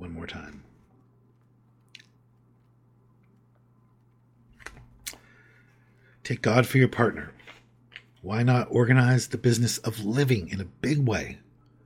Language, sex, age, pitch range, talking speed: English, male, 50-69, 105-120 Hz, 95 wpm